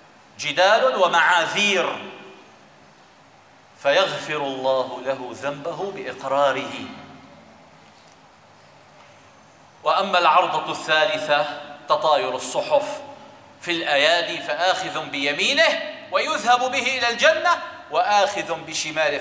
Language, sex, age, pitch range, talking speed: Arabic, male, 40-59, 155-255 Hz, 70 wpm